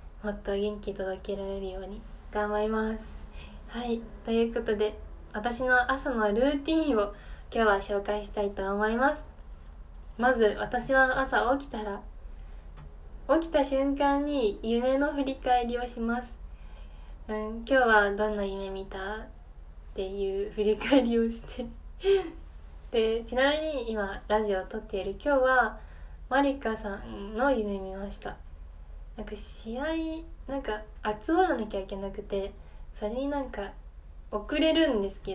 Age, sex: 10-29, female